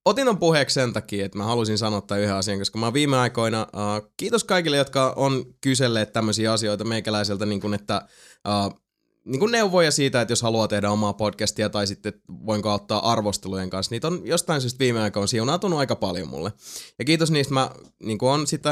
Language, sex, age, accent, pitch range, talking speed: Finnish, male, 20-39, native, 105-135 Hz, 205 wpm